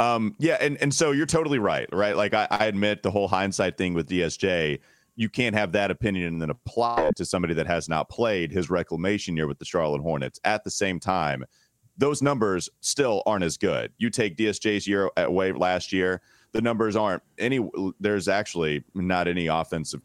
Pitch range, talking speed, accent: 85-105 Hz, 200 wpm, American